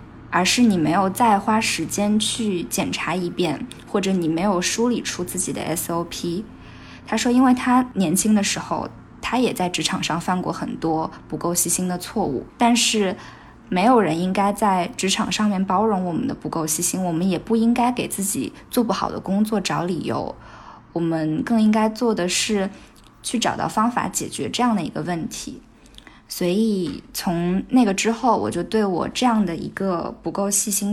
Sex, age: female, 10-29